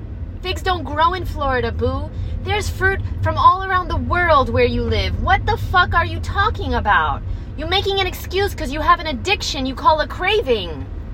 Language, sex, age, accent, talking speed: English, female, 20-39, American, 195 wpm